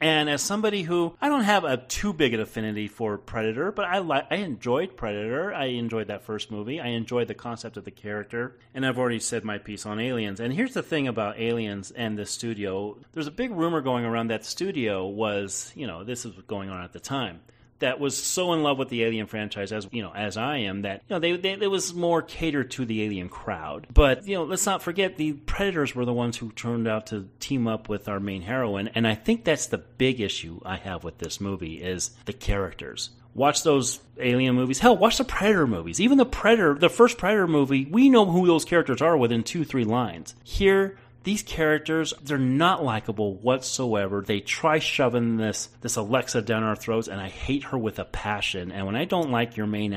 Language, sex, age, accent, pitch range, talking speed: English, male, 30-49, American, 105-155 Hz, 225 wpm